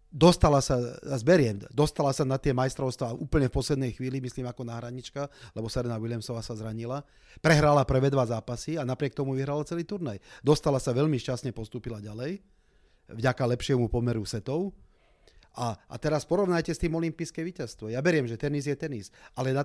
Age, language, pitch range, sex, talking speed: 30-49, Slovak, 115-150 Hz, male, 175 wpm